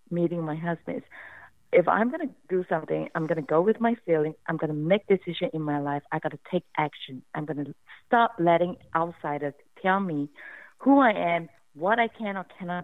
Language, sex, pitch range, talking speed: English, female, 155-190 Hz, 210 wpm